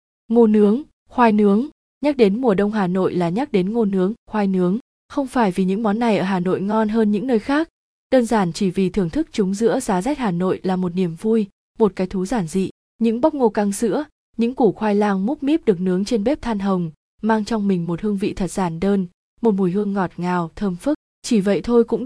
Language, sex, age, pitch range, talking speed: Vietnamese, female, 20-39, 185-225 Hz, 240 wpm